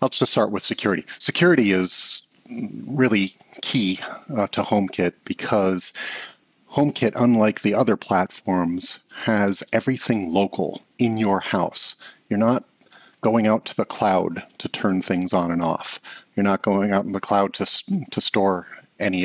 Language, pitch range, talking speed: English, 95-115 Hz, 150 wpm